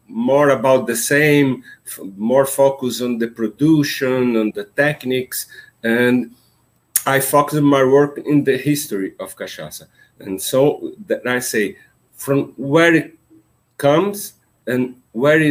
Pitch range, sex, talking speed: 120-150 Hz, male, 130 wpm